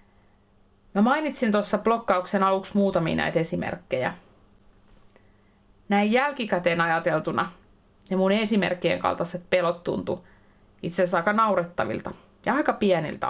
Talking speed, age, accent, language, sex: 110 wpm, 30-49, native, Finnish, female